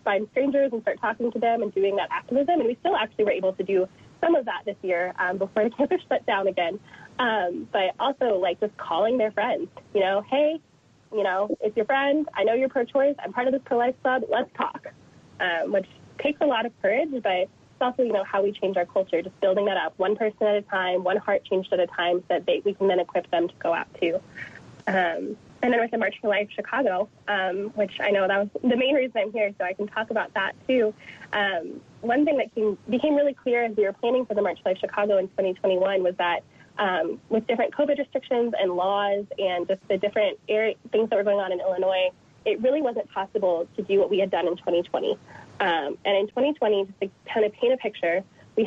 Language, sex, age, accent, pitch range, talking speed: English, female, 20-39, American, 190-250 Hz, 245 wpm